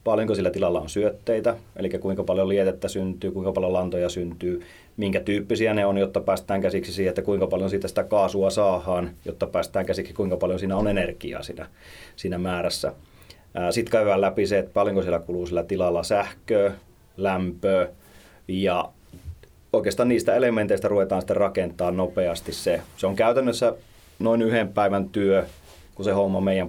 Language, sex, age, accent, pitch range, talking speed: Finnish, male, 30-49, native, 90-105 Hz, 160 wpm